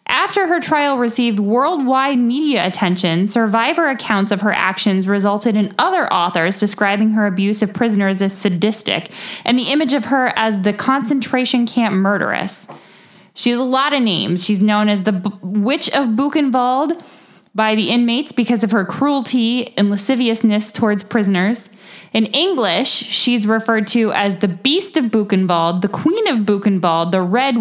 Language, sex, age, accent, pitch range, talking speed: English, female, 10-29, American, 200-265 Hz, 160 wpm